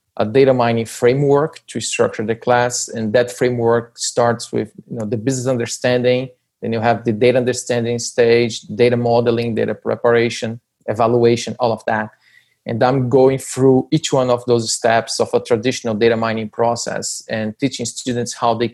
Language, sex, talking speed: English, male, 170 wpm